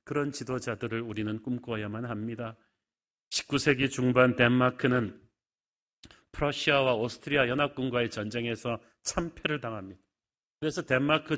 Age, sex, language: 40-59, male, Korean